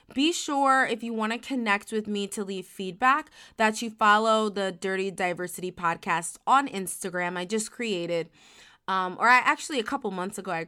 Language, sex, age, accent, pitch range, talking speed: English, female, 20-39, American, 190-235 Hz, 185 wpm